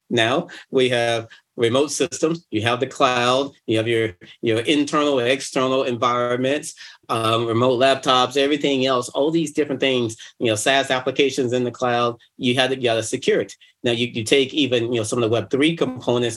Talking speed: 185 wpm